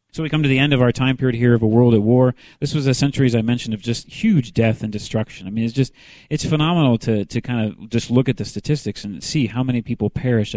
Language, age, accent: English, 40-59, American